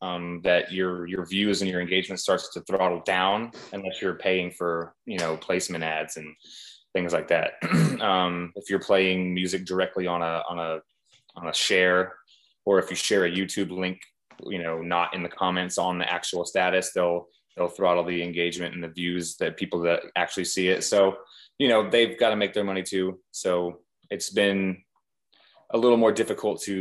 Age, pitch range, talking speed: 20-39, 90-100 Hz, 190 wpm